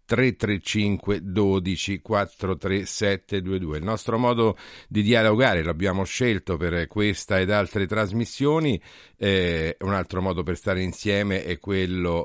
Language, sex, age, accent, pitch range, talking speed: Italian, male, 50-69, native, 85-105 Hz, 125 wpm